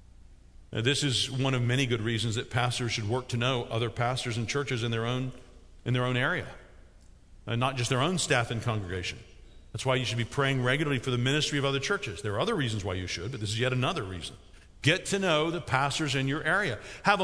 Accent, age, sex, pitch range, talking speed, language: American, 50-69, male, 120-165 Hz, 235 wpm, English